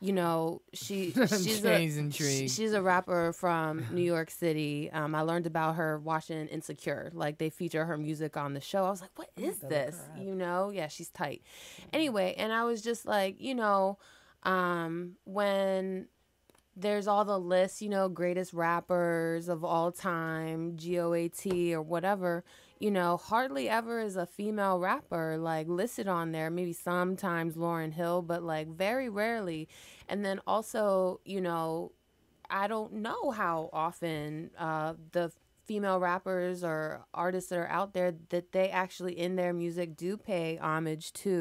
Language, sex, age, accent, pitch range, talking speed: English, female, 20-39, American, 160-190 Hz, 160 wpm